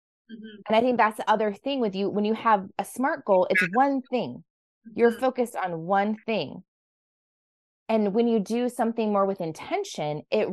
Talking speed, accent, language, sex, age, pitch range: 180 wpm, American, English, female, 20-39, 160-230 Hz